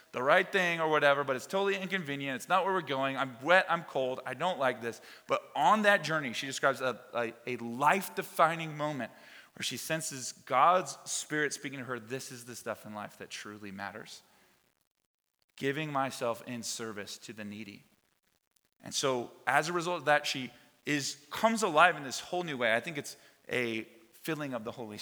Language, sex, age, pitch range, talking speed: English, male, 30-49, 120-155 Hz, 190 wpm